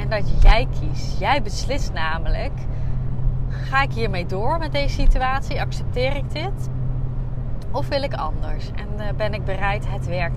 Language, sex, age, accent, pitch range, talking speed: Dutch, female, 30-49, Dutch, 120-130 Hz, 150 wpm